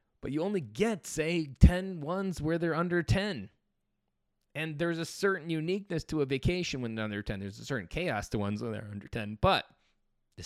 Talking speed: 200 wpm